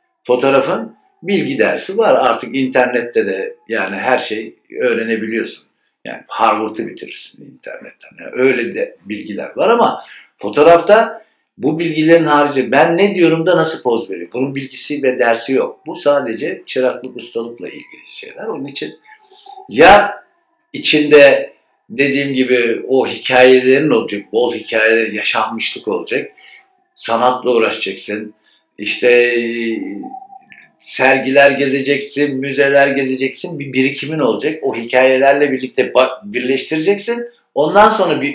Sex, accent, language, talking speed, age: male, native, Turkish, 115 wpm, 60-79